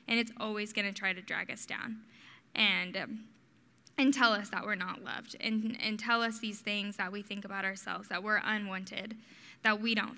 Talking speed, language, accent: 210 wpm, English, American